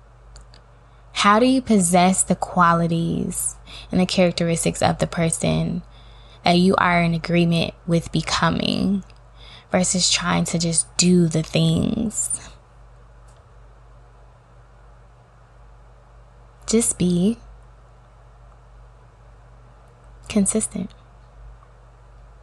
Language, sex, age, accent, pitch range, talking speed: English, female, 20-39, American, 120-185 Hz, 80 wpm